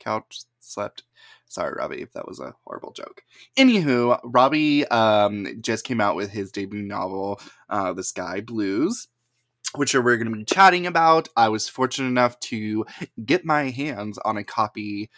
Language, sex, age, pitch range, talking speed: English, male, 20-39, 105-125 Hz, 165 wpm